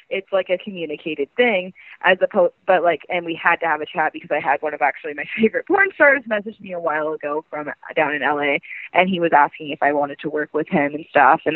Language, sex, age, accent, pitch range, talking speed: English, female, 20-39, American, 150-190 Hz, 255 wpm